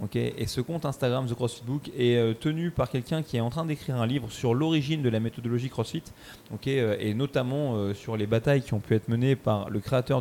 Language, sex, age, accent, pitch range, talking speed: French, male, 20-39, French, 110-140 Hz, 215 wpm